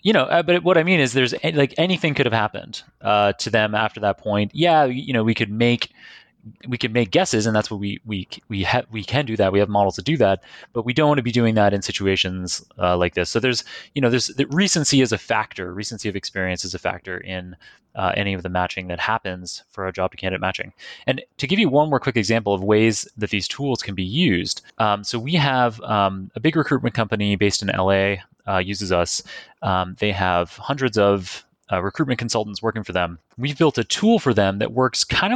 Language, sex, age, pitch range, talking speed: English, male, 20-39, 100-130 Hz, 235 wpm